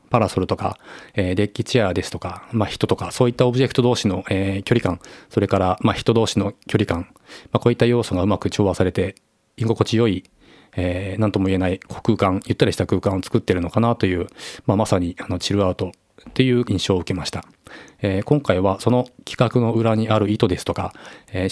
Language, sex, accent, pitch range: Japanese, male, native, 95-115 Hz